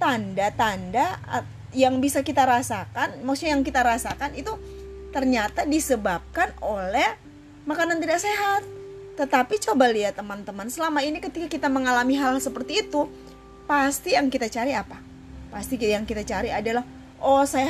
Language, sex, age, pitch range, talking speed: Indonesian, female, 20-39, 205-285 Hz, 135 wpm